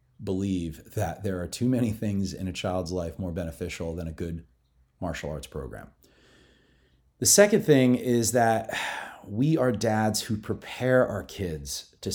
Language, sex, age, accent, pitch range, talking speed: English, male, 30-49, American, 85-110 Hz, 160 wpm